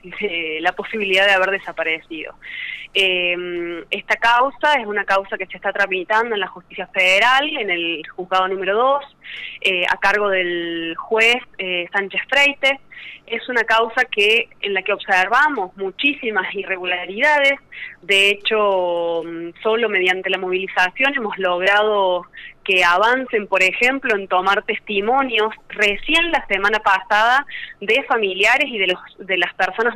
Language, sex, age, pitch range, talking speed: Spanish, female, 20-39, 185-235 Hz, 140 wpm